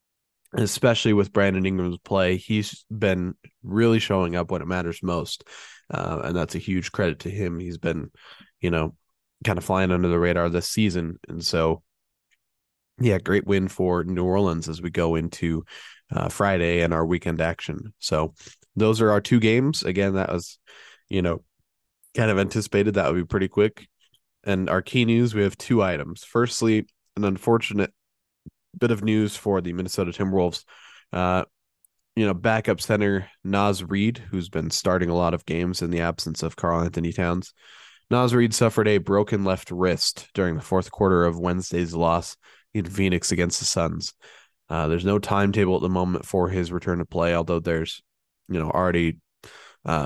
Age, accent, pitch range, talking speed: 20-39, American, 85-105 Hz, 175 wpm